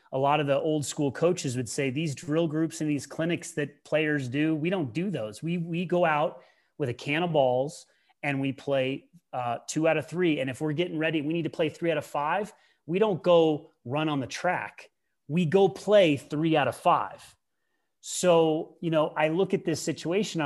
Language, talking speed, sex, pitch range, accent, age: English, 215 wpm, male, 135-160 Hz, American, 30-49